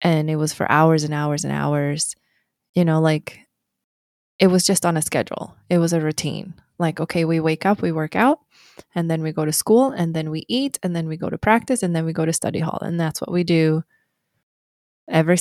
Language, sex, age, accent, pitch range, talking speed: English, female, 20-39, American, 155-180 Hz, 230 wpm